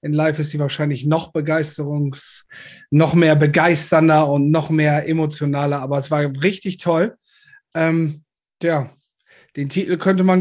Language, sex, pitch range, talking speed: German, male, 145-180 Hz, 145 wpm